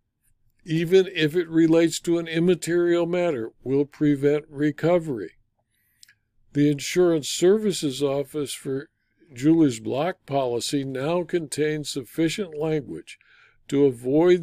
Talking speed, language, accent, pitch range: 105 wpm, English, American, 125-155 Hz